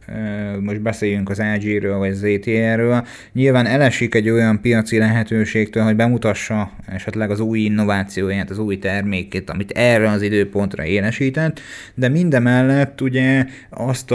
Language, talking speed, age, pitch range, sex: Hungarian, 125 wpm, 30-49, 105-120 Hz, male